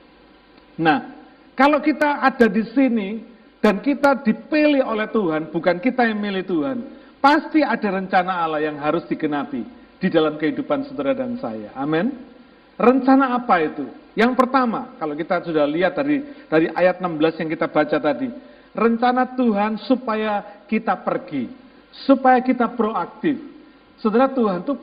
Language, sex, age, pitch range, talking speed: Malay, male, 50-69, 190-270 Hz, 145 wpm